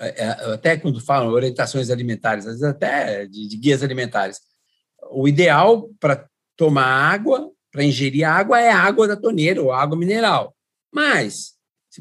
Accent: Brazilian